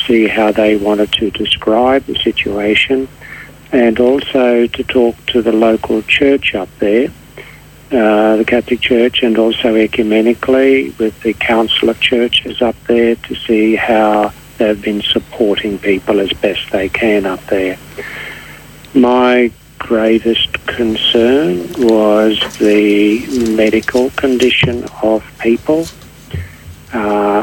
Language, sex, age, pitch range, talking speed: English, male, 60-79, 105-120 Hz, 120 wpm